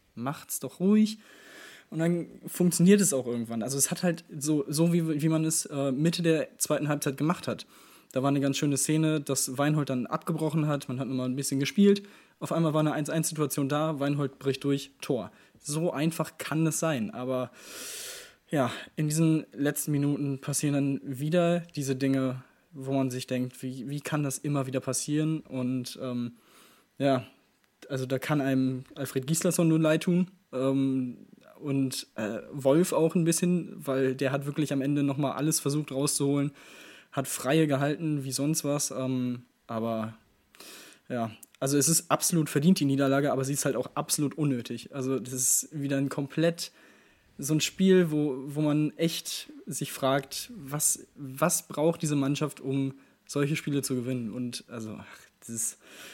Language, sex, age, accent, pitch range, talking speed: German, male, 20-39, German, 135-160 Hz, 170 wpm